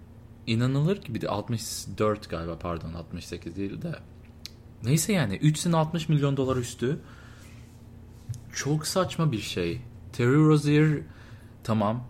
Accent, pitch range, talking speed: native, 95-115 Hz, 125 wpm